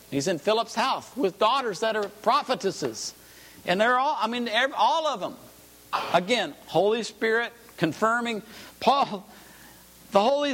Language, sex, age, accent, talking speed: English, male, 50-69, American, 135 wpm